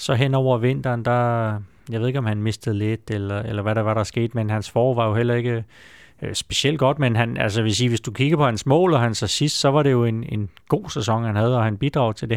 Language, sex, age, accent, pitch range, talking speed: Danish, male, 30-49, native, 115-135 Hz, 275 wpm